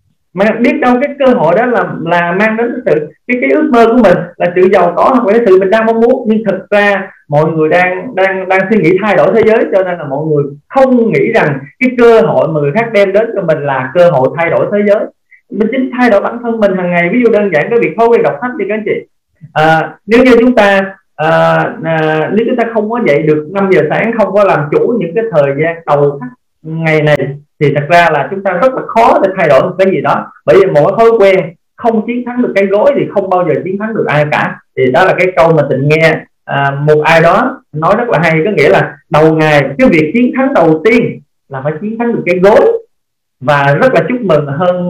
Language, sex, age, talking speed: Vietnamese, male, 20-39, 260 wpm